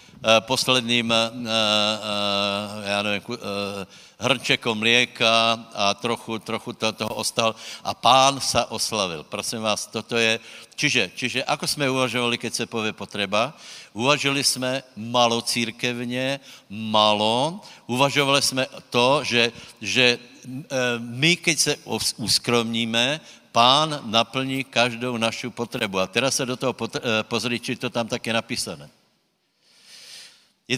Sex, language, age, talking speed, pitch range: male, Slovak, 60-79, 115 wpm, 110-135 Hz